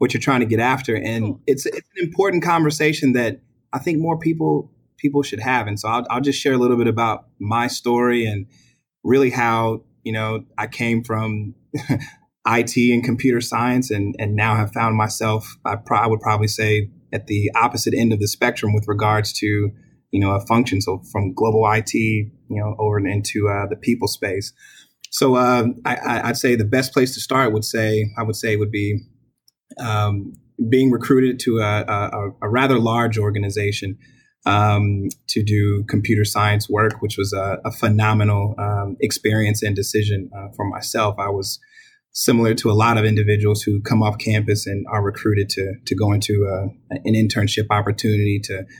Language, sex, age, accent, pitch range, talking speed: English, male, 30-49, American, 105-120 Hz, 185 wpm